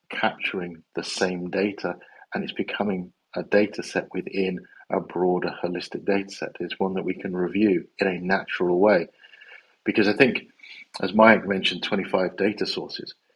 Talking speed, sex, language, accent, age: 155 wpm, male, English, British, 50-69